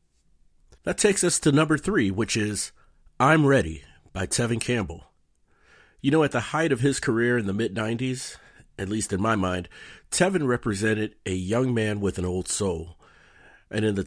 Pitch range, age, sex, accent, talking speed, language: 90-125 Hz, 40-59, male, American, 175 wpm, English